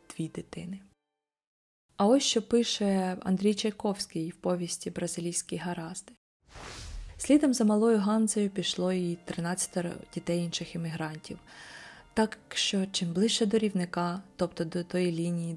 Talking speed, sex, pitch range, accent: 120 wpm, female, 170-210 Hz, native